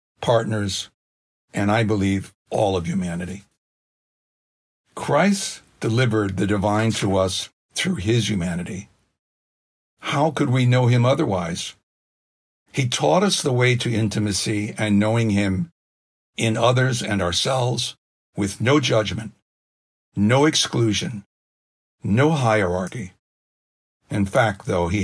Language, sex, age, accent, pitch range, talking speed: English, male, 60-79, American, 95-120 Hz, 115 wpm